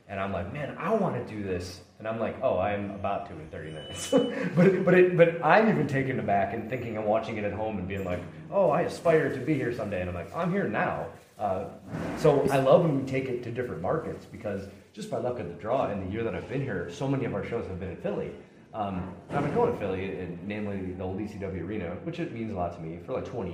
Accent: American